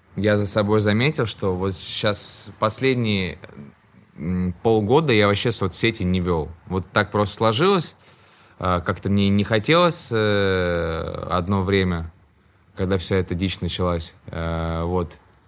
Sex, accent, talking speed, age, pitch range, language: male, native, 115 wpm, 20-39, 95-115 Hz, Russian